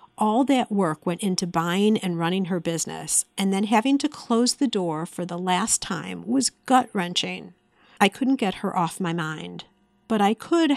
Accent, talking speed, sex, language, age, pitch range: American, 190 wpm, female, English, 50-69, 185-250 Hz